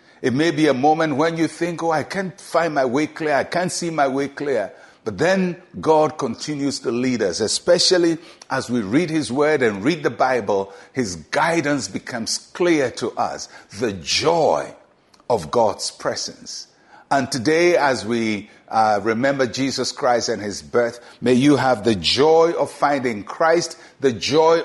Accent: Nigerian